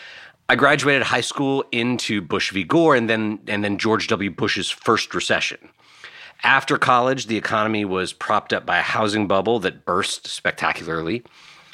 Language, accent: English, American